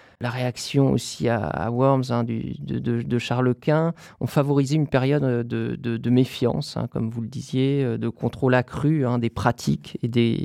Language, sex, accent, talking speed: French, male, French, 195 wpm